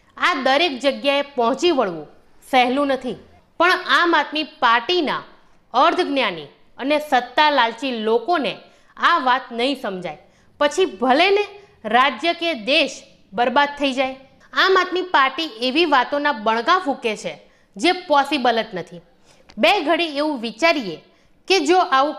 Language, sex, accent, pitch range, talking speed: Gujarati, female, native, 250-325 Hz, 125 wpm